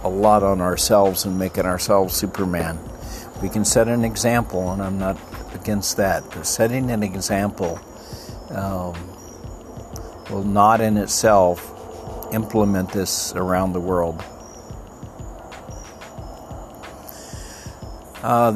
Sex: male